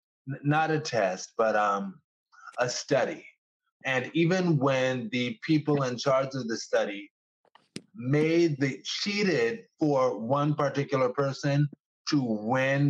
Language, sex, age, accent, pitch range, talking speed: English, male, 30-49, American, 125-160 Hz, 120 wpm